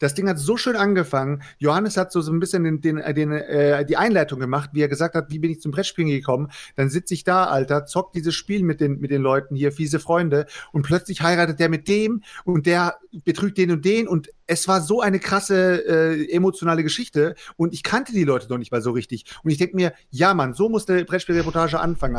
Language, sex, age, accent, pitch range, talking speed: German, male, 40-59, German, 145-185 Hz, 235 wpm